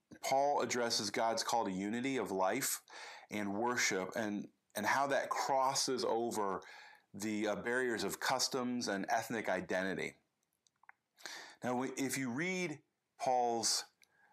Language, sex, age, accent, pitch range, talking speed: English, male, 40-59, American, 110-140 Hz, 120 wpm